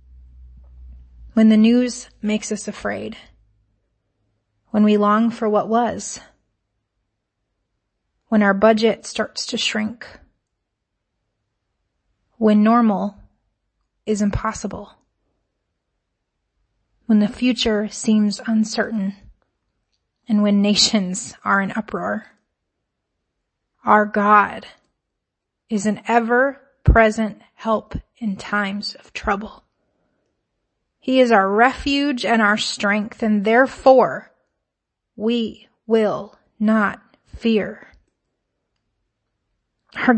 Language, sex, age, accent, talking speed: English, female, 30-49, American, 85 wpm